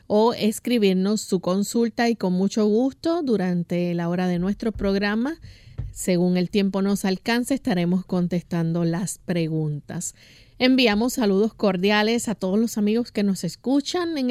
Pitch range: 190-230 Hz